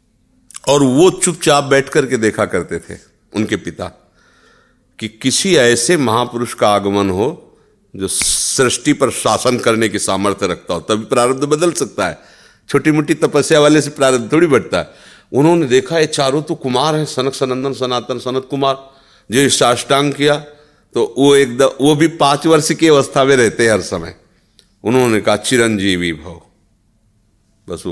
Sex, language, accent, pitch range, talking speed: male, Hindi, native, 95-130 Hz, 155 wpm